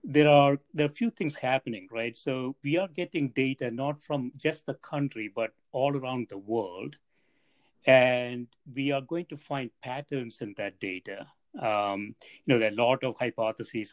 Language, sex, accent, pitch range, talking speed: English, male, Indian, 115-140 Hz, 180 wpm